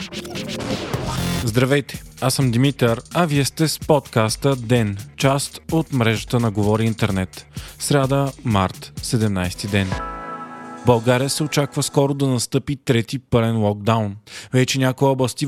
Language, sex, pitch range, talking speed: Bulgarian, male, 115-140 Hz, 125 wpm